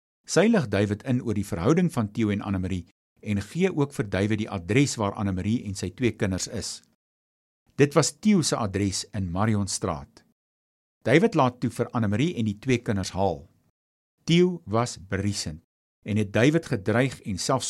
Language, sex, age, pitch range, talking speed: English, male, 50-69, 90-130 Hz, 165 wpm